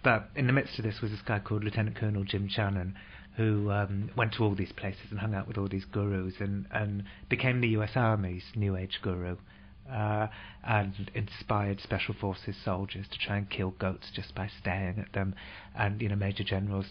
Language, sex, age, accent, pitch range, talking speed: English, male, 30-49, British, 100-115 Hz, 205 wpm